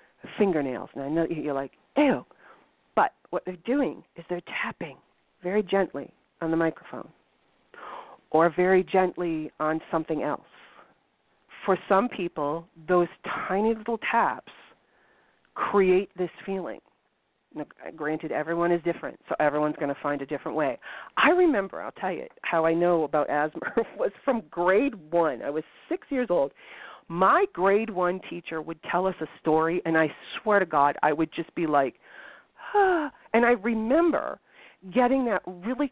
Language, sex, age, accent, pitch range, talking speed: English, female, 40-59, American, 160-230 Hz, 155 wpm